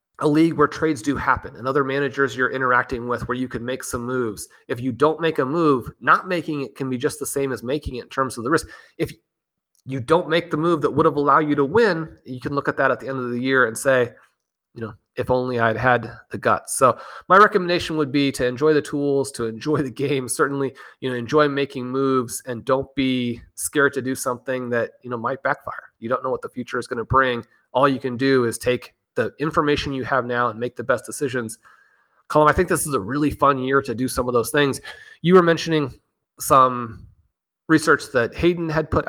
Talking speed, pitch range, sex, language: 240 wpm, 125-145 Hz, male, English